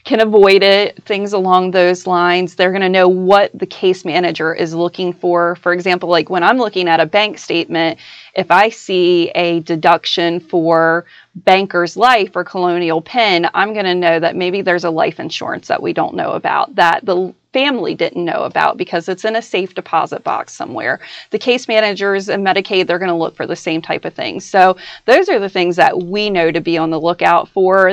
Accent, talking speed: American, 205 wpm